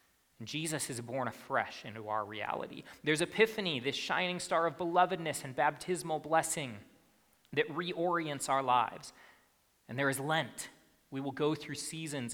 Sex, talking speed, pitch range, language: male, 145 wpm, 120-175 Hz, English